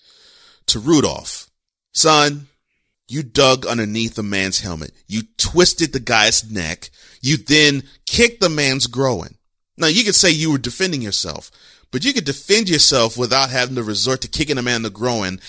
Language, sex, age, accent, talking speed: English, male, 30-49, American, 165 wpm